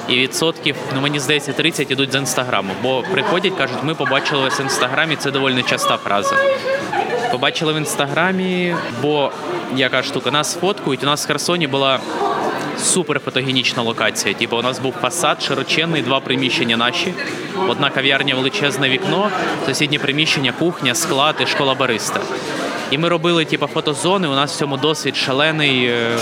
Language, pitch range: Ukrainian, 130-155 Hz